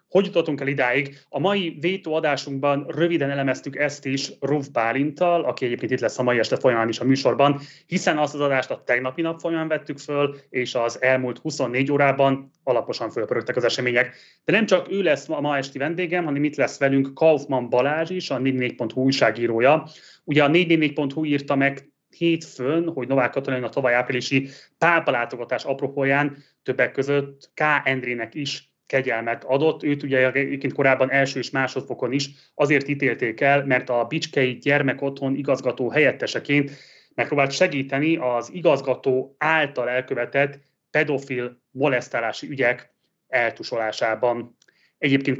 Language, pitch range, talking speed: Hungarian, 130-150 Hz, 145 wpm